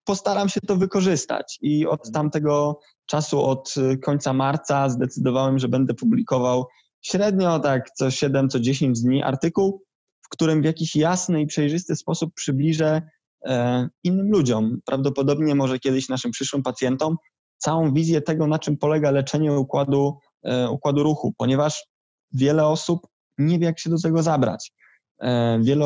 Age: 20-39